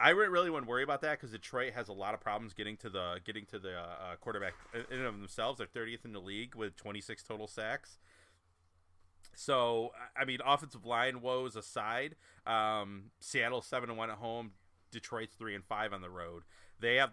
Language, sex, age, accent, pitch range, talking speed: English, male, 30-49, American, 95-125 Hz, 205 wpm